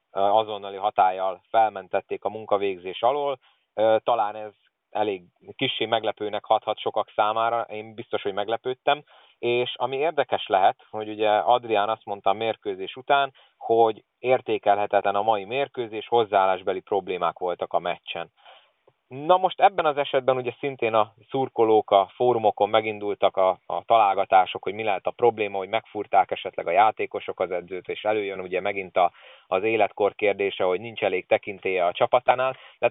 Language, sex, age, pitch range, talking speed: Hungarian, male, 30-49, 105-135 Hz, 150 wpm